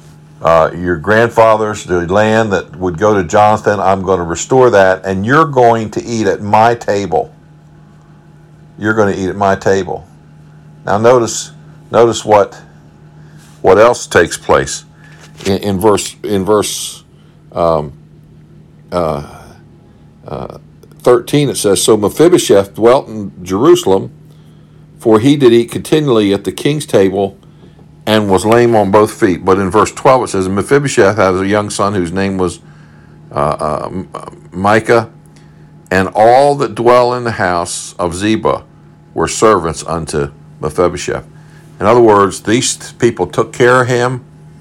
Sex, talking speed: male, 145 wpm